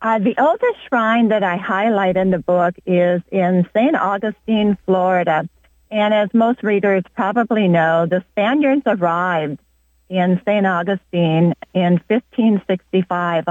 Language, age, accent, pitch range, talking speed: English, 50-69, American, 170-210 Hz, 130 wpm